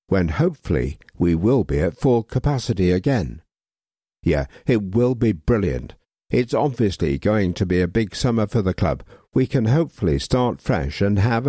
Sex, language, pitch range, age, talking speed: male, English, 90-125 Hz, 60-79, 165 wpm